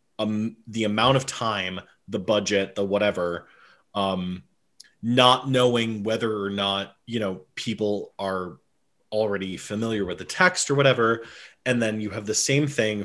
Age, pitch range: 30-49, 100-125 Hz